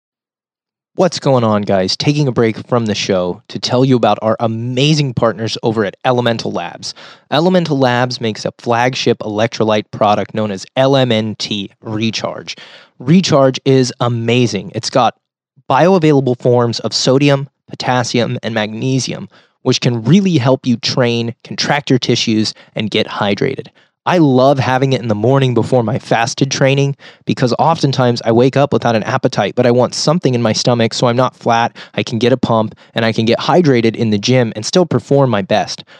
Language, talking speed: English, 175 wpm